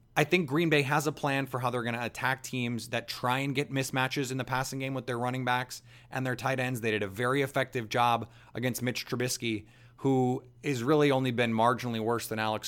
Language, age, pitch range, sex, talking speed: English, 30-49, 120-135 Hz, male, 230 wpm